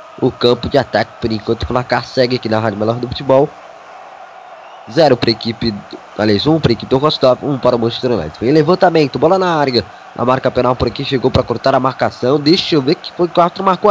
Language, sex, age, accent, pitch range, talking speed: Portuguese, male, 20-39, Brazilian, 120-160 Hz, 240 wpm